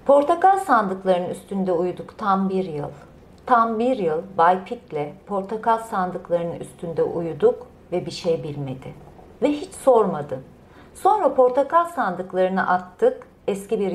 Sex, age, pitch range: female, 40-59, 170-240 Hz